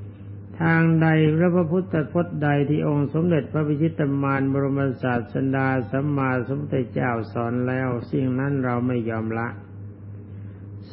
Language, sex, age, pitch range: Thai, male, 60-79, 110-145 Hz